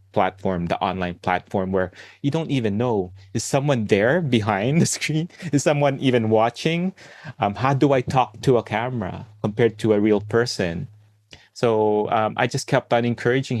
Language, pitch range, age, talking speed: English, 105-130 Hz, 30-49, 170 wpm